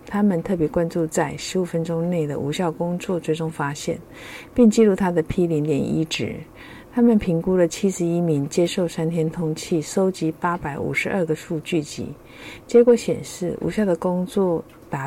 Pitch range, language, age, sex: 160-195 Hz, Chinese, 50-69, female